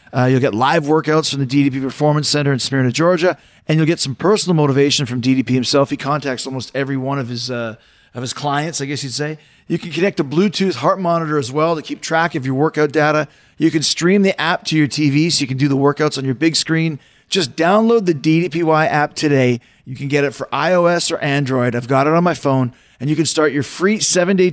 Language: English